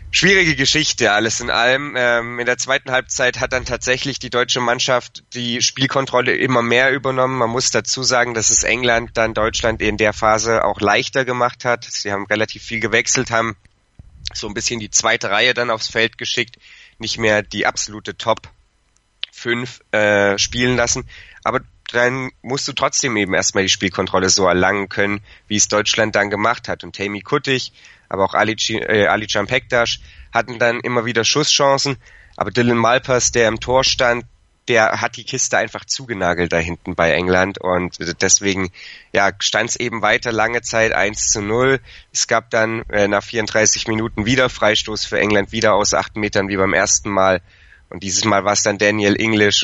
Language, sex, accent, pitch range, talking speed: German, male, German, 100-120 Hz, 180 wpm